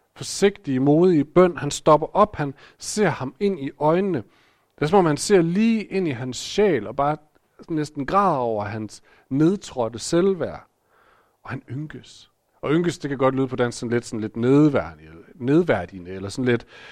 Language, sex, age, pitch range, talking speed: Danish, male, 40-59, 110-150 Hz, 180 wpm